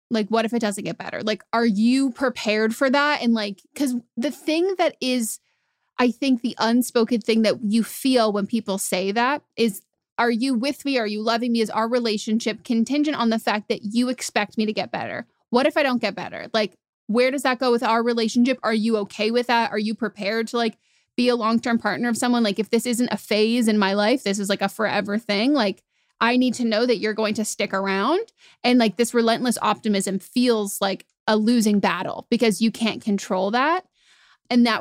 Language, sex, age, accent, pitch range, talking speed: English, female, 20-39, American, 210-240 Hz, 220 wpm